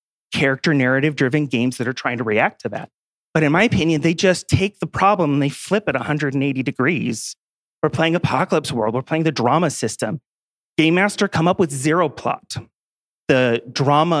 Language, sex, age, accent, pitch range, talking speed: English, male, 30-49, American, 130-165 Hz, 180 wpm